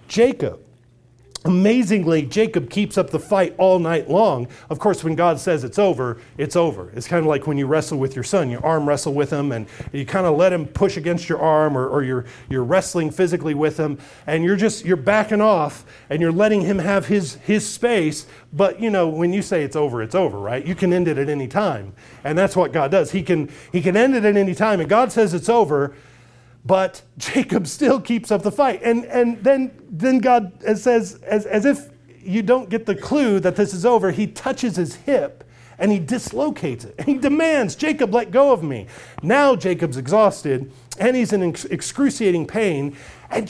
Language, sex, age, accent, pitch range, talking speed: English, male, 40-59, American, 145-230 Hz, 210 wpm